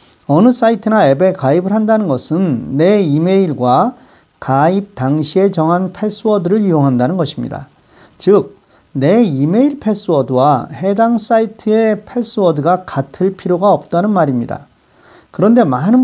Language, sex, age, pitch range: Korean, male, 40-59, 145-210 Hz